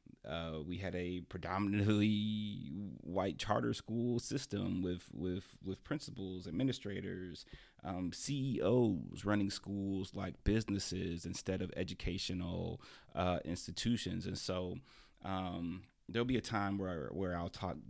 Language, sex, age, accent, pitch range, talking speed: English, male, 30-49, American, 85-100 Hz, 120 wpm